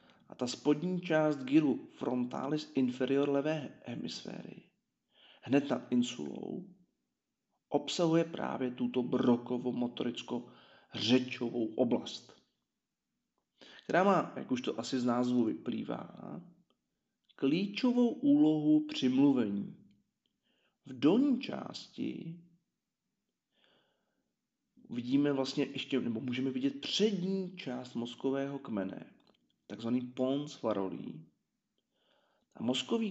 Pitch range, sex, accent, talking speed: 125-210 Hz, male, native, 85 wpm